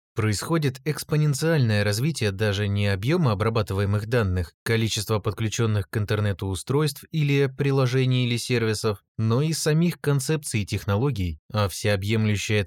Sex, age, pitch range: male, 20-39, 100-135 Hz